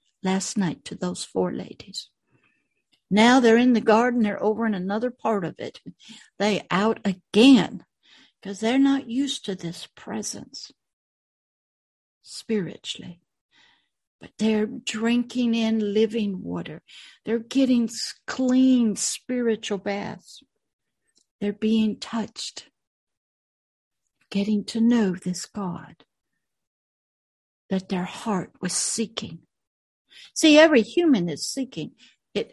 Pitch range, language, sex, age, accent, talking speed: 195-250 Hz, English, female, 60-79, American, 110 wpm